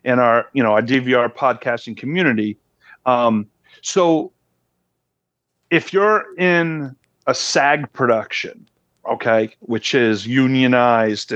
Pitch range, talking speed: 110-145 Hz, 105 wpm